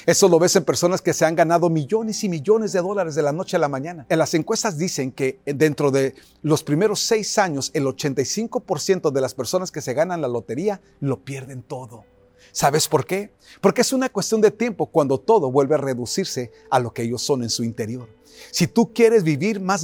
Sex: male